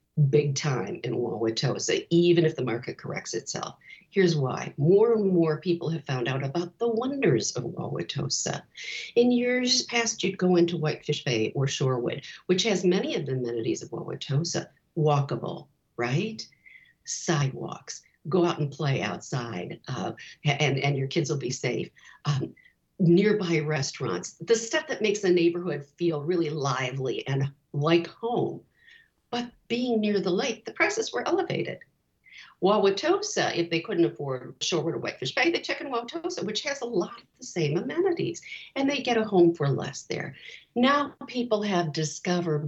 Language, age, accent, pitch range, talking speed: English, 50-69, American, 145-220 Hz, 160 wpm